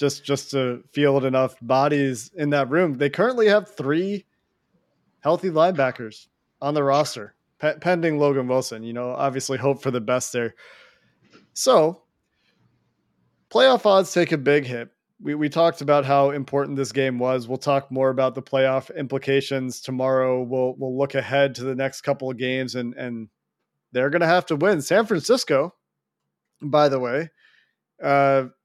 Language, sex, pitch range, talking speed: English, male, 130-150 Hz, 165 wpm